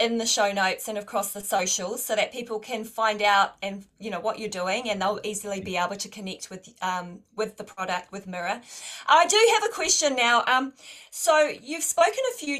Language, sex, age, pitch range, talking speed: English, female, 30-49, 205-265 Hz, 220 wpm